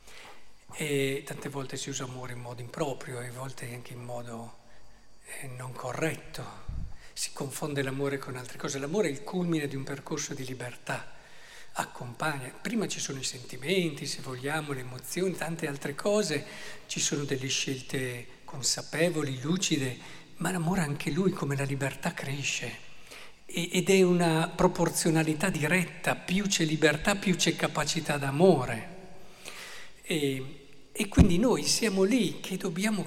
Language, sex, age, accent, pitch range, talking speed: Italian, male, 50-69, native, 140-190 Hz, 145 wpm